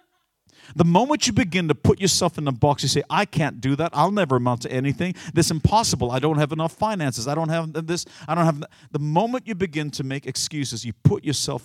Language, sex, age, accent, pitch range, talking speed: English, male, 50-69, American, 115-155 Hz, 240 wpm